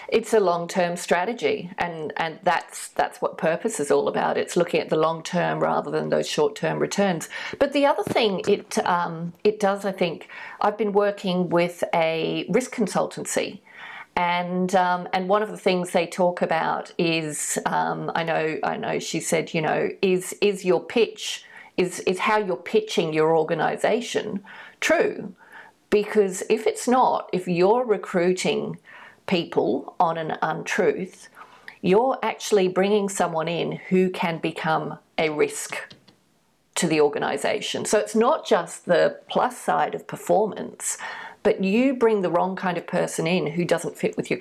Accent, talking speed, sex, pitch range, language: Australian, 170 wpm, female, 175-215 Hz, English